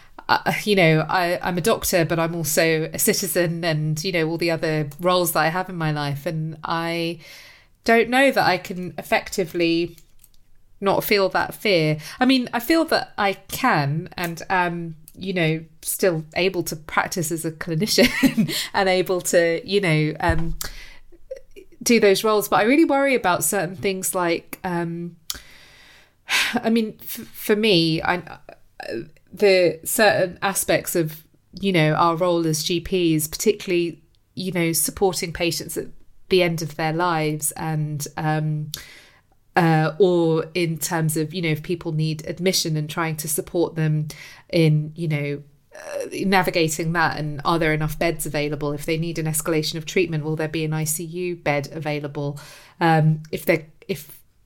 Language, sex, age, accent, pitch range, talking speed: English, female, 30-49, British, 155-185 Hz, 160 wpm